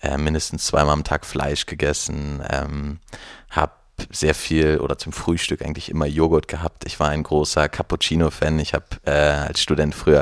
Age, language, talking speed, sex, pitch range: 30-49, German, 165 wpm, male, 75-85 Hz